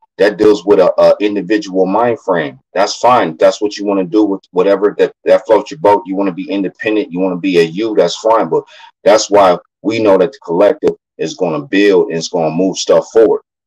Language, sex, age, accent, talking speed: English, male, 30-49, American, 240 wpm